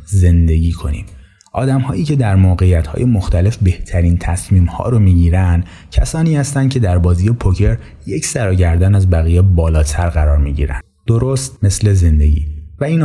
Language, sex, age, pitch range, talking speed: Persian, male, 30-49, 85-110 Hz, 135 wpm